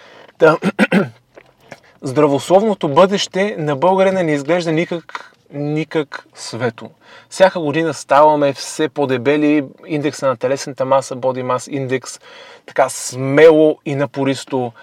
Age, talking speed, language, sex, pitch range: 30-49, 100 wpm, Bulgarian, male, 130-170 Hz